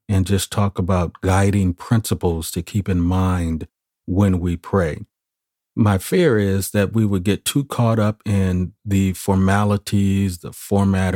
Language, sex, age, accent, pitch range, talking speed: English, male, 40-59, American, 90-110 Hz, 150 wpm